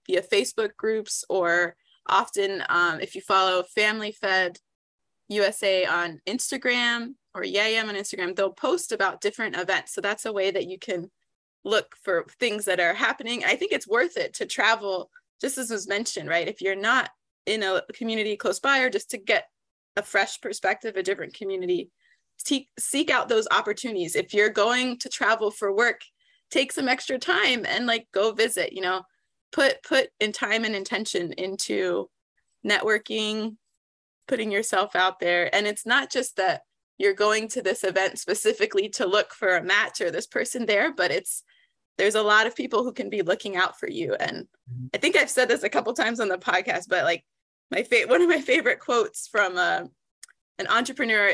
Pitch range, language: 195-260 Hz, English